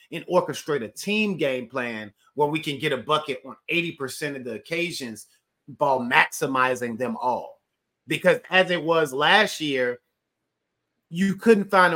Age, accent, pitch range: 30-49, American, 130-170 Hz